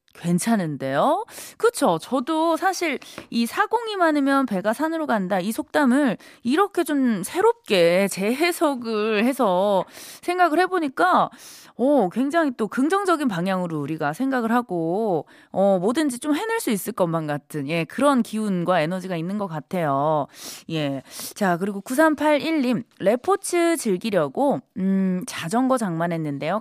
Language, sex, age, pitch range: Korean, female, 20-39, 175-275 Hz